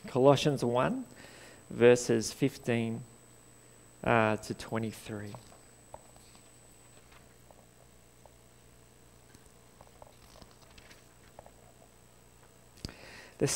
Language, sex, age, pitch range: English, male, 40-59, 115-150 Hz